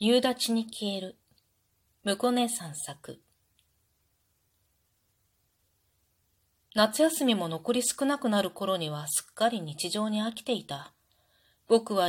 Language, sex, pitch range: Japanese, female, 155-225 Hz